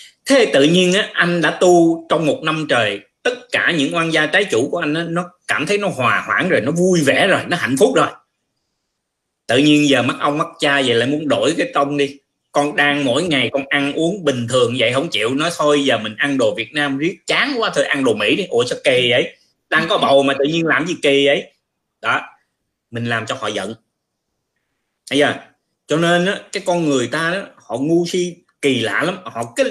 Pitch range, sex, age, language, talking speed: 135-175 Hz, male, 20-39, Vietnamese, 235 wpm